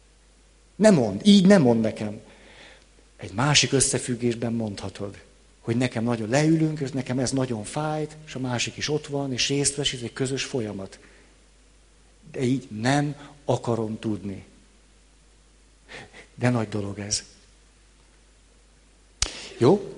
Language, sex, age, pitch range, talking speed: Hungarian, male, 50-69, 110-140 Hz, 125 wpm